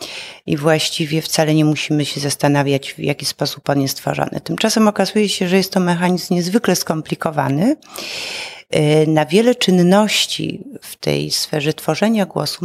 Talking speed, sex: 140 wpm, female